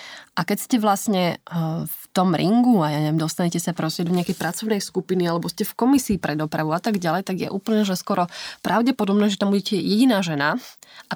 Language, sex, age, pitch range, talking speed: Slovak, female, 20-39, 180-220 Hz, 205 wpm